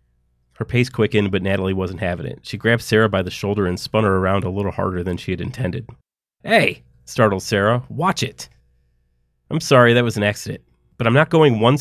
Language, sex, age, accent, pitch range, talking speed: English, male, 30-49, American, 85-115 Hz, 210 wpm